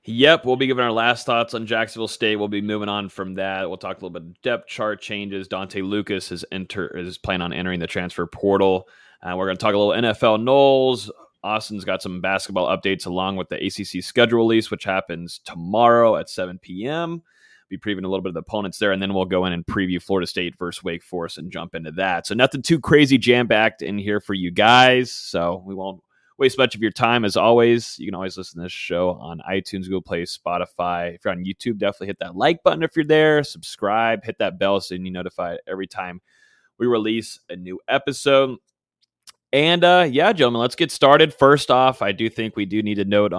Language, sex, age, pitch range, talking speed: English, male, 30-49, 95-115 Hz, 225 wpm